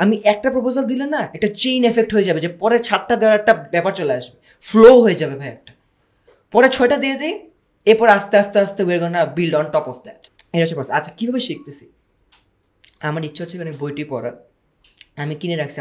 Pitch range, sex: 145-215 Hz, female